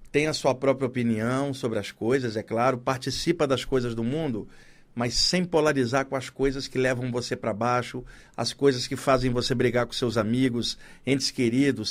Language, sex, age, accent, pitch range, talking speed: Portuguese, male, 50-69, Brazilian, 125-145 Hz, 185 wpm